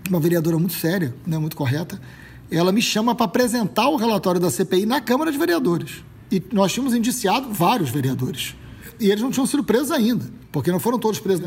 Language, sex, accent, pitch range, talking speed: Portuguese, male, Brazilian, 165-230 Hz, 200 wpm